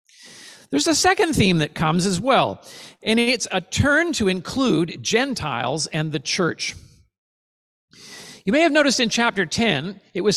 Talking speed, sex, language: 155 wpm, male, English